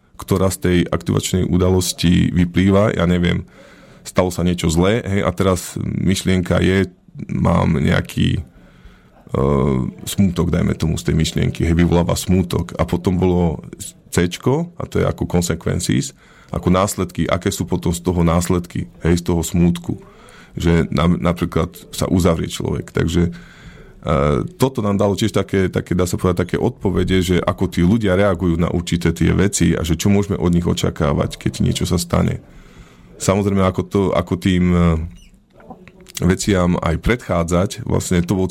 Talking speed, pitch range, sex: 150 wpm, 85-95 Hz, male